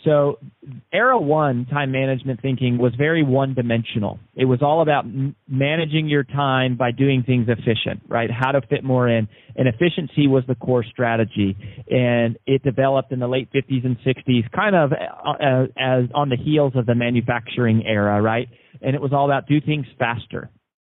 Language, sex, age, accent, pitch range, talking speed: English, male, 40-59, American, 125-150 Hz, 180 wpm